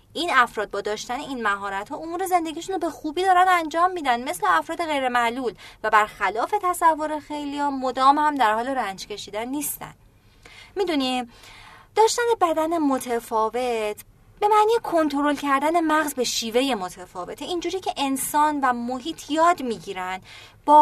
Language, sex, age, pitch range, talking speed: Persian, female, 30-49, 210-315 Hz, 140 wpm